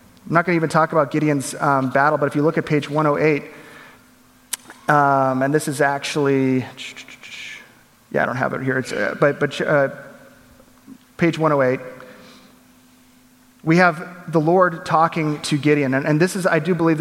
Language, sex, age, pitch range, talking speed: English, male, 30-49, 135-160 Hz, 175 wpm